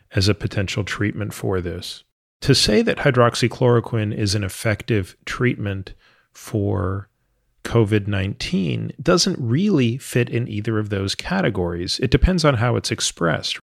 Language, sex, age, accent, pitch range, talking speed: English, male, 40-59, American, 105-125 Hz, 130 wpm